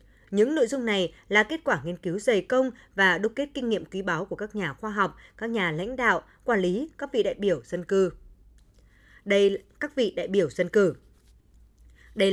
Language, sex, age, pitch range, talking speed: Vietnamese, female, 20-39, 180-250 Hz, 215 wpm